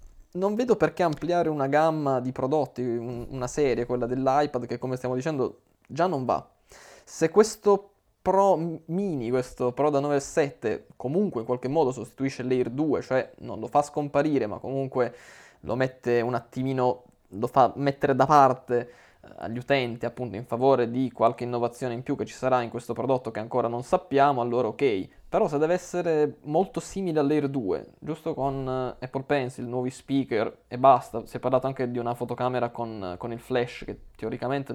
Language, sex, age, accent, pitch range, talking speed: Italian, male, 20-39, native, 120-145 Hz, 175 wpm